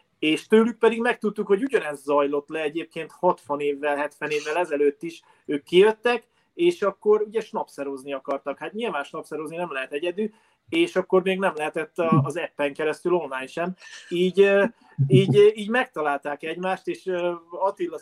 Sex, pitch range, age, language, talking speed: male, 145-190 Hz, 30-49, Hungarian, 150 wpm